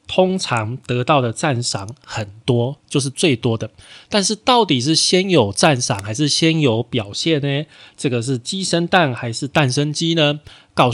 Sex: male